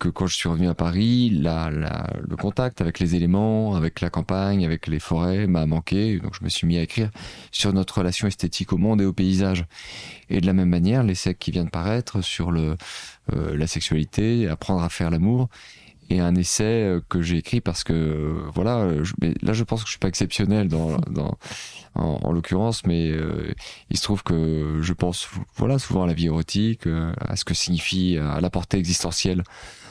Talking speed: 205 wpm